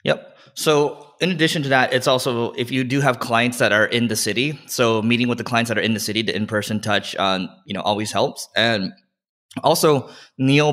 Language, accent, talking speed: English, American, 220 wpm